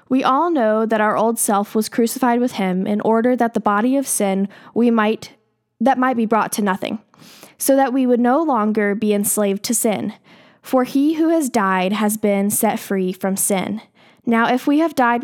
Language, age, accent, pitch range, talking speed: English, 10-29, American, 205-255 Hz, 205 wpm